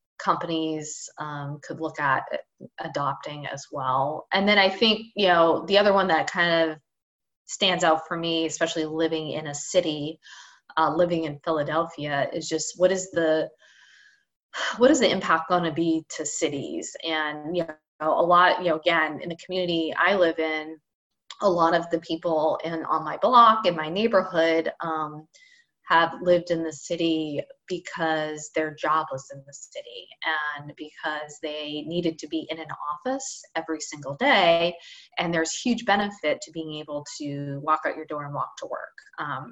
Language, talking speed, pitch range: English, 175 wpm, 155-175 Hz